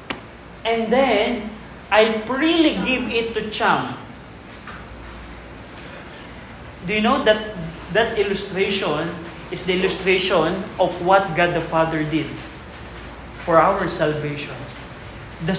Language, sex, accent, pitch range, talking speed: Filipino, male, native, 175-230 Hz, 105 wpm